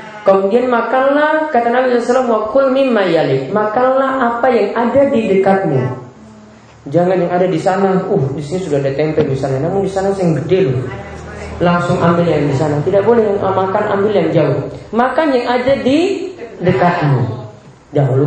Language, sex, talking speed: Malay, male, 165 wpm